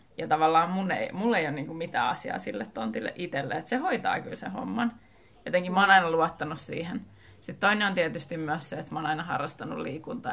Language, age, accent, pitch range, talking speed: Finnish, 20-39, native, 170-245 Hz, 215 wpm